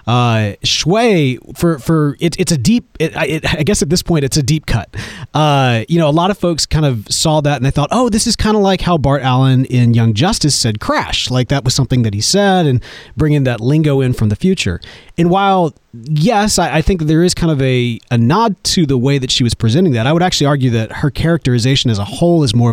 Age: 30-49